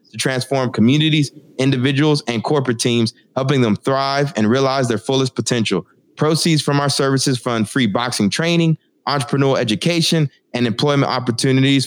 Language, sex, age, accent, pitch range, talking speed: English, male, 20-39, American, 125-150 Hz, 140 wpm